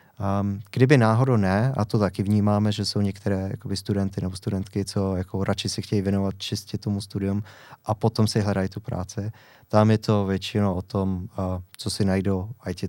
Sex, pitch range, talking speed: male, 100-115 Hz, 185 wpm